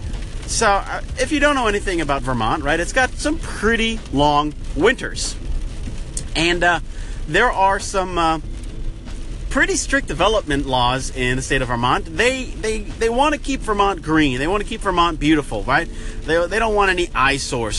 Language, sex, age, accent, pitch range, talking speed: English, male, 30-49, American, 130-205 Hz, 175 wpm